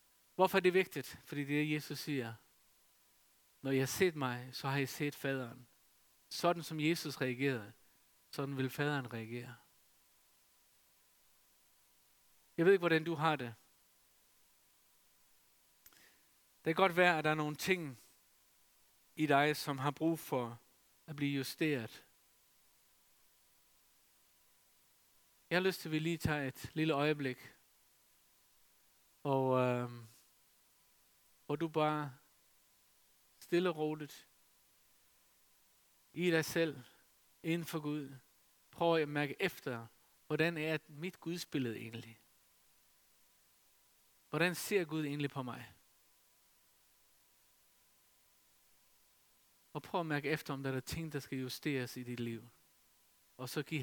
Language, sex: Danish, male